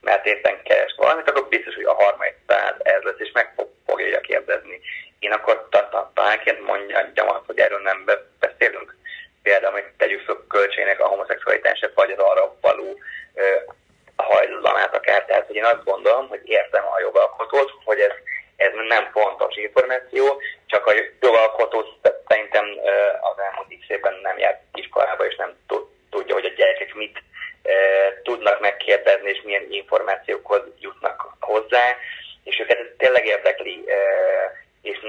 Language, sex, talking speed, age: Hungarian, male, 145 wpm, 30-49